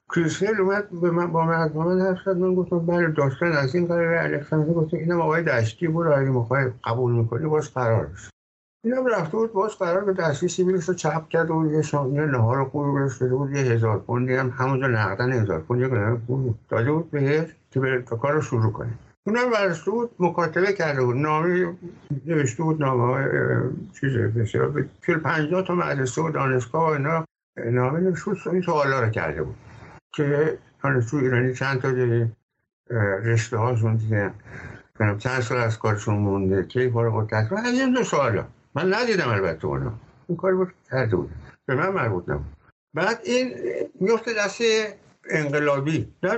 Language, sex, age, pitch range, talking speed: Persian, male, 60-79, 125-175 Hz, 140 wpm